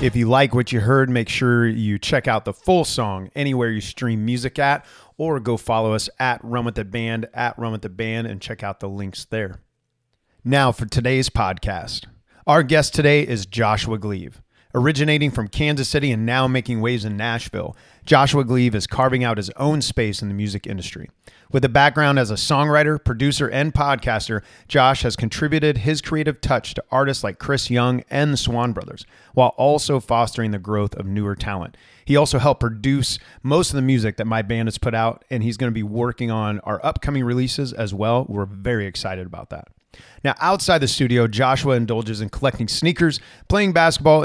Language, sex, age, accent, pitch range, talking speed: English, male, 30-49, American, 110-135 Hz, 195 wpm